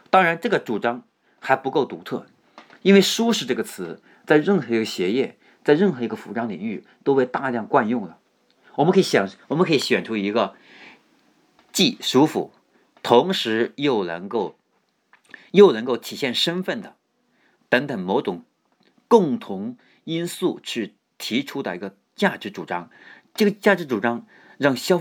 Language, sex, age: Chinese, male, 50-69